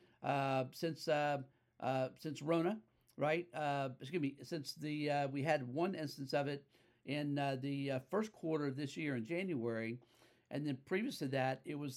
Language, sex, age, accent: English, male, 50-69, American